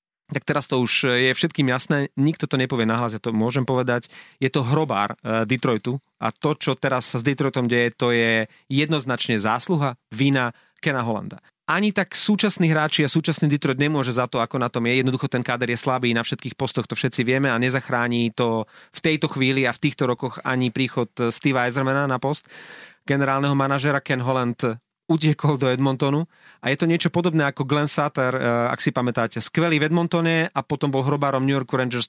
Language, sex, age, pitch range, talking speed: Slovak, male, 30-49, 125-150 Hz, 195 wpm